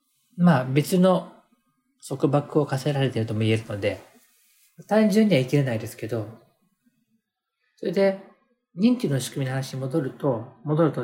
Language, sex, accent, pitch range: Japanese, male, native, 130-200 Hz